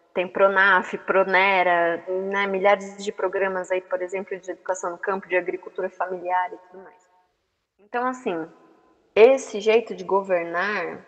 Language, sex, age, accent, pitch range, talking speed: Portuguese, female, 20-39, Brazilian, 180-220 Hz, 140 wpm